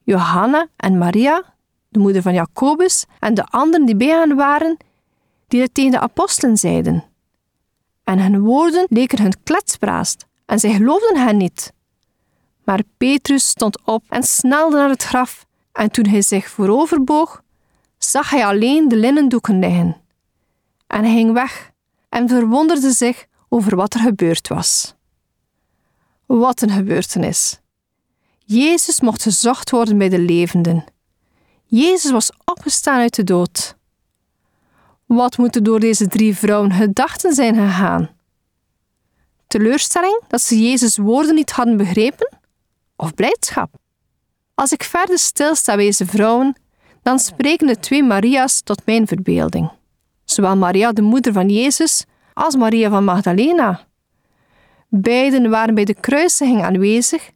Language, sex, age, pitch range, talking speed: Dutch, female, 40-59, 205-280 Hz, 135 wpm